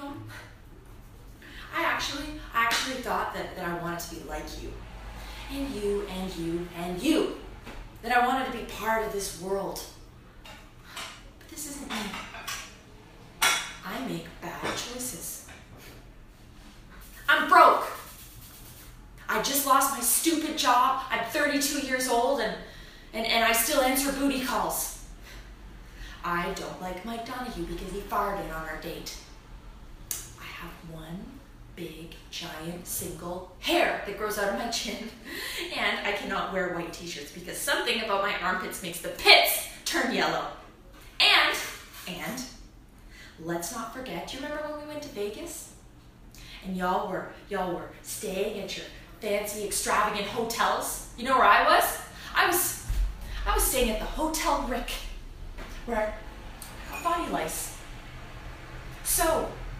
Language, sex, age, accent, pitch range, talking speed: English, female, 20-39, American, 180-265 Hz, 140 wpm